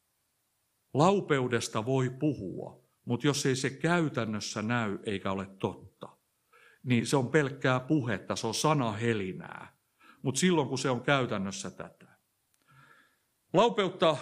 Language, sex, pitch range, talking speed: Finnish, male, 105-140 Hz, 120 wpm